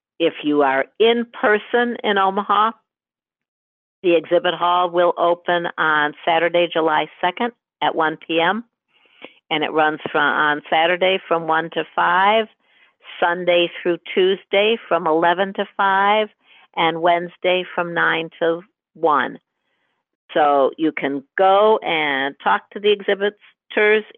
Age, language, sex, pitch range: 60-79, English, female, 160-210 Hz